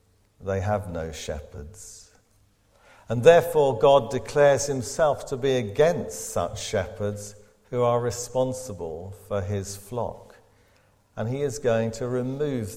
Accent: British